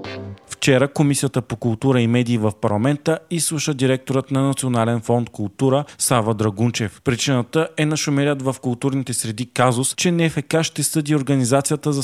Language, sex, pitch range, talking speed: Bulgarian, male, 115-145 Hz, 145 wpm